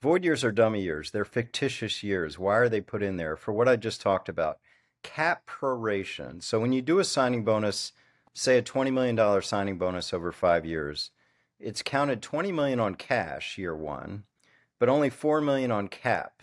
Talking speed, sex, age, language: 190 wpm, male, 40-59, English